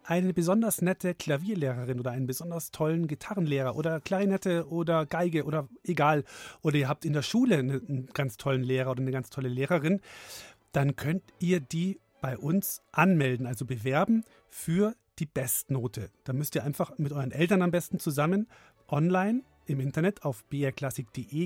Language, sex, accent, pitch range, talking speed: German, male, German, 130-165 Hz, 160 wpm